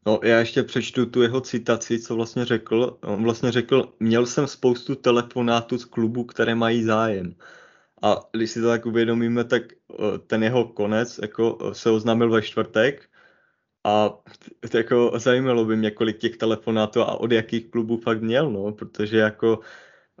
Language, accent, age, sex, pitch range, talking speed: Czech, native, 20-39, male, 105-115 Hz, 150 wpm